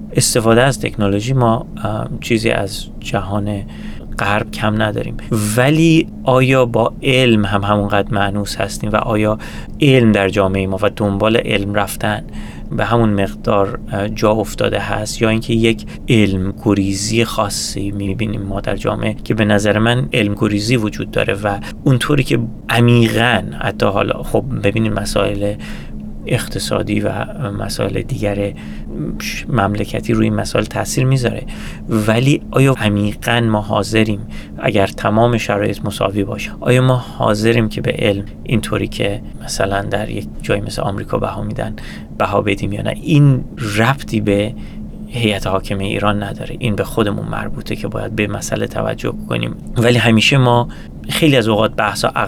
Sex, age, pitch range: male, 30-49, 100-115 Hz